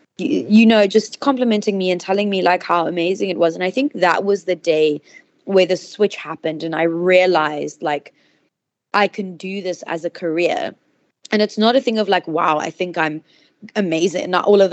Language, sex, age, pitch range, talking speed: English, female, 20-39, 160-190 Hz, 205 wpm